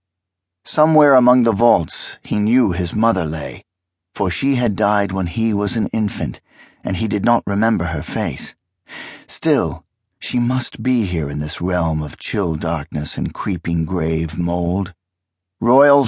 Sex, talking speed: male, 155 wpm